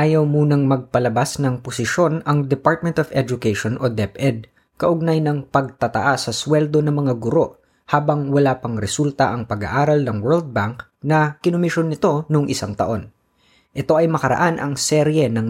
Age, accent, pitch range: 20-39, native, 115-150 Hz